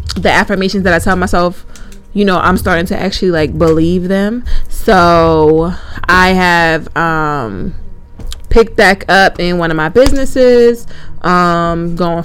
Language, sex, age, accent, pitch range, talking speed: English, female, 20-39, American, 170-200 Hz, 140 wpm